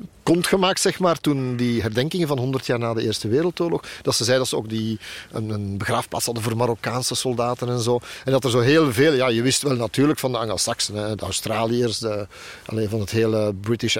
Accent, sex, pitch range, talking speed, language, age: Belgian, male, 120-145 Hz, 225 wpm, Dutch, 40-59